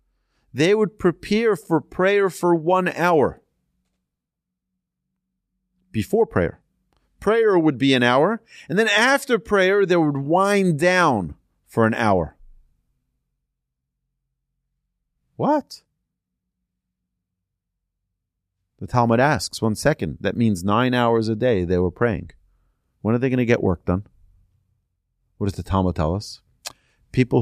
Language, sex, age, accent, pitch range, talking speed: English, male, 40-59, American, 90-130 Hz, 125 wpm